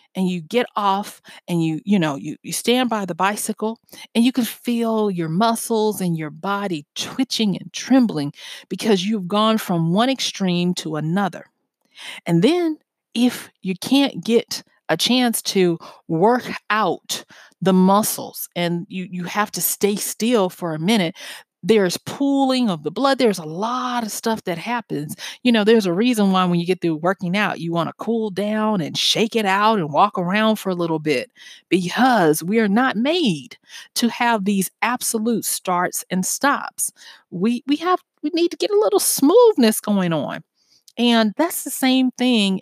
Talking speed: 175 wpm